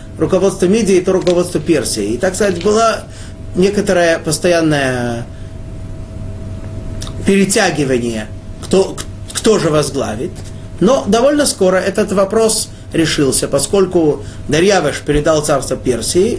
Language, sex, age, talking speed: Russian, male, 30-49, 100 wpm